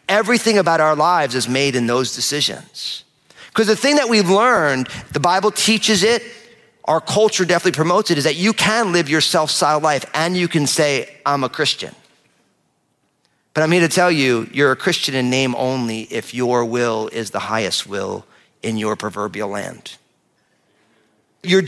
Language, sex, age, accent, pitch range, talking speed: English, male, 40-59, American, 130-195 Hz, 175 wpm